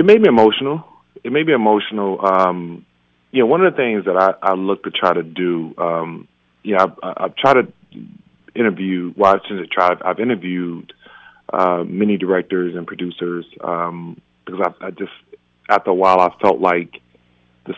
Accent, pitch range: American, 80-100 Hz